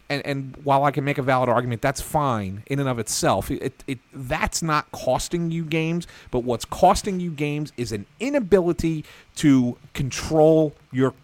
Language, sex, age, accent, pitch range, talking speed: English, male, 40-59, American, 125-165 Hz, 180 wpm